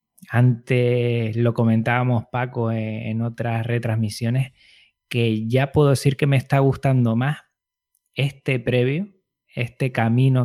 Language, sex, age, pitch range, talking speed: Spanish, male, 20-39, 110-130 Hz, 120 wpm